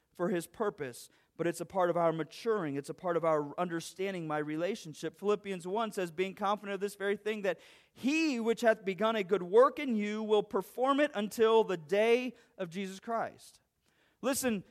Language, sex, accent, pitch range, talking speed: English, male, American, 210-290 Hz, 190 wpm